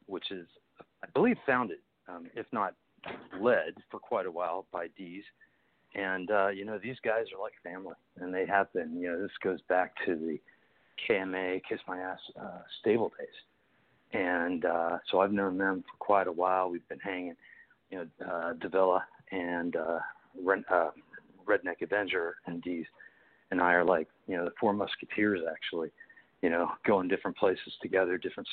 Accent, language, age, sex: American, English, 50-69, male